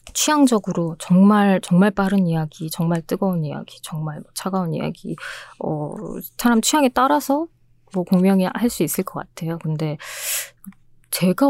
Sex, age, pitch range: female, 20-39, 165-200 Hz